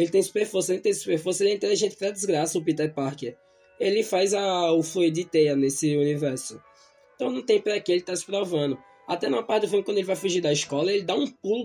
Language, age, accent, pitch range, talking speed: Portuguese, 20-39, Brazilian, 155-195 Hz, 245 wpm